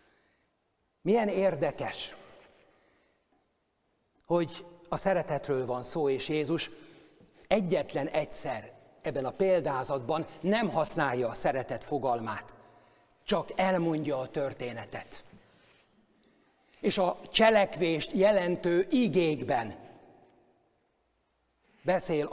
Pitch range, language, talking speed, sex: 150-185 Hz, Hungarian, 80 wpm, male